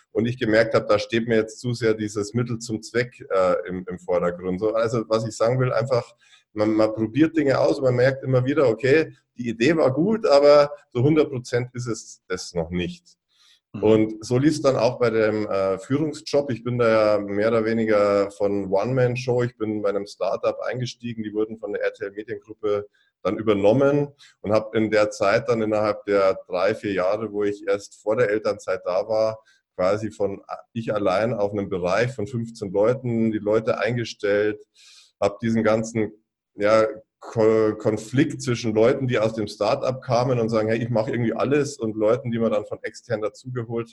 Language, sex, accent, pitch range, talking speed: German, male, German, 105-125 Hz, 195 wpm